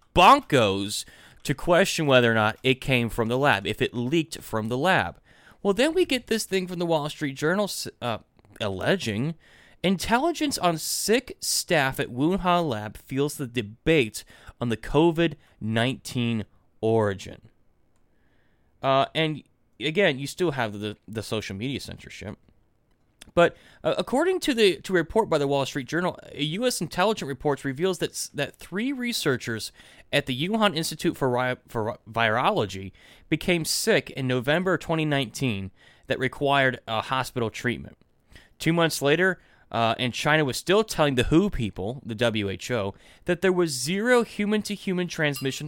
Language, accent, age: English, American, 20-39